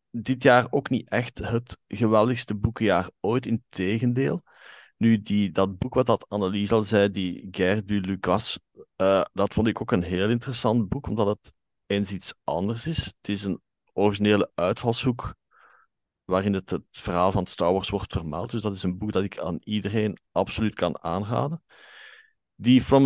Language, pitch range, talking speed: Dutch, 95-125 Hz, 175 wpm